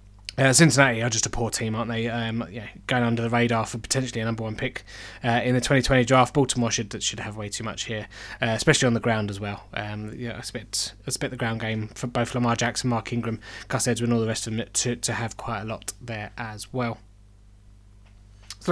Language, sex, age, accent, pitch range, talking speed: English, male, 20-39, British, 115-135 Hz, 230 wpm